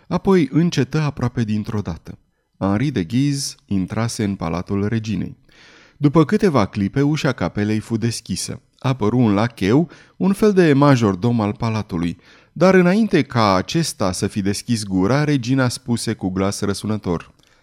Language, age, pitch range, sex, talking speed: Romanian, 30-49, 105-150 Hz, male, 145 wpm